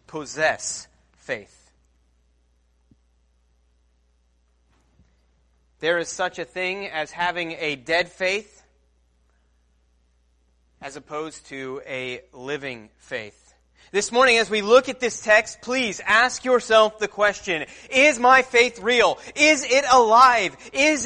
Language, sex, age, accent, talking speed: English, male, 30-49, American, 110 wpm